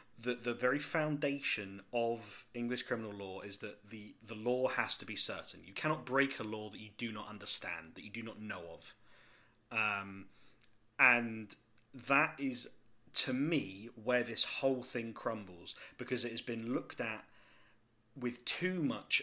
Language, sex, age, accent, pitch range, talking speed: English, male, 30-49, British, 110-125 Hz, 165 wpm